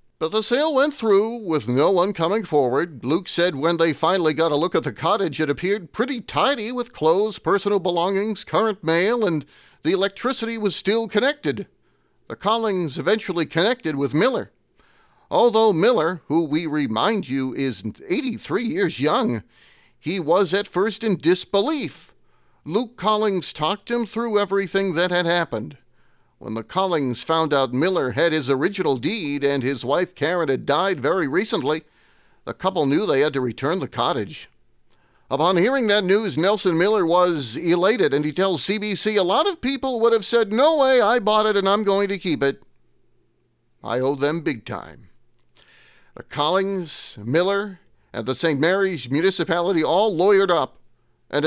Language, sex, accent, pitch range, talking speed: English, male, American, 155-210 Hz, 165 wpm